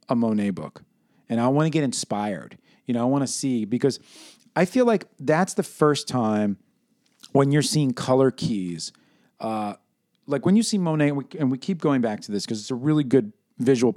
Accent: American